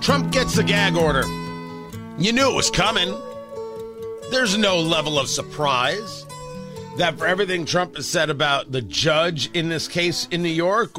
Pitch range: 130-185 Hz